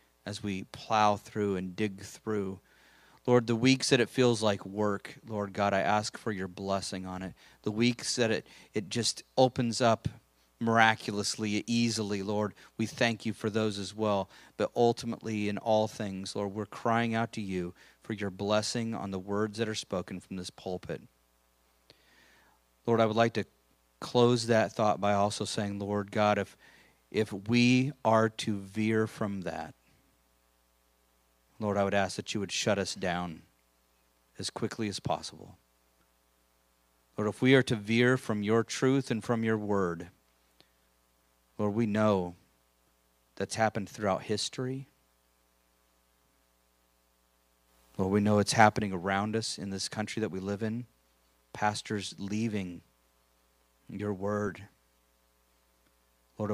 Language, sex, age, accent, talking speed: English, male, 40-59, American, 150 wpm